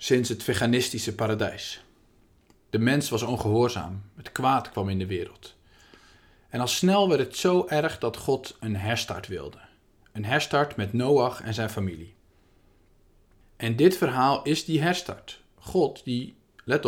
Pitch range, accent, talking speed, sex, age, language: 100-170 Hz, Dutch, 150 wpm, male, 40-59, Dutch